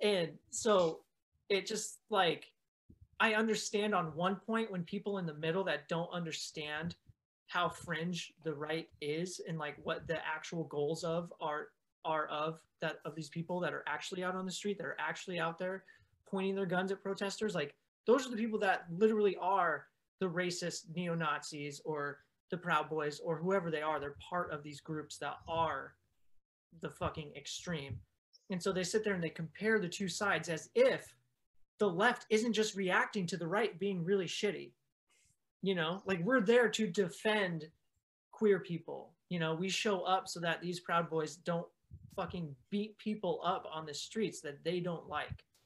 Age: 30-49